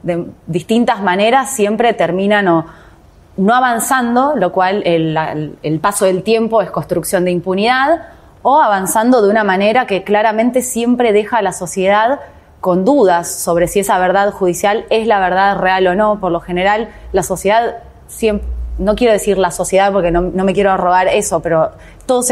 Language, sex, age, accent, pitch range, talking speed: Spanish, female, 20-39, Argentinian, 180-215 Hz, 170 wpm